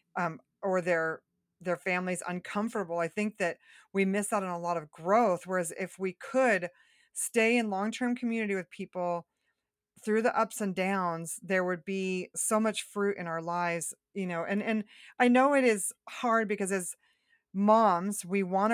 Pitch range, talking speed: 170-195 Hz, 180 wpm